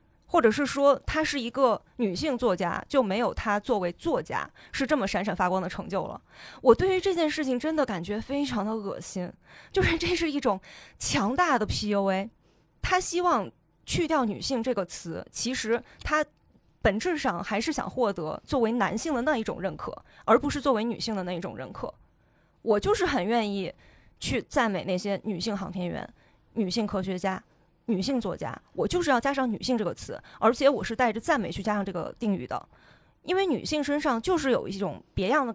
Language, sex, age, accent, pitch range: Chinese, female, 20-39, native, 200-285 Hz